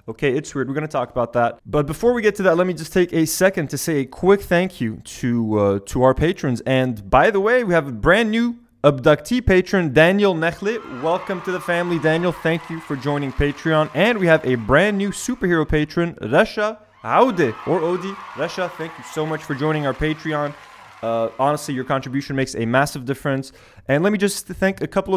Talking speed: 215 wpm